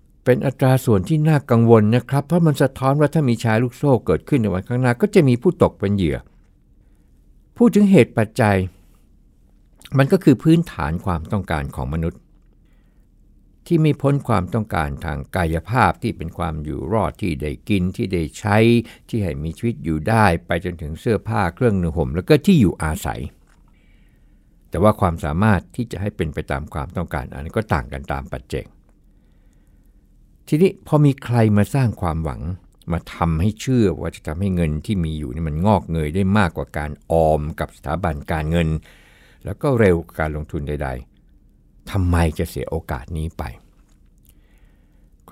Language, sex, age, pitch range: Thai, male, 60-79, 80-115 Hz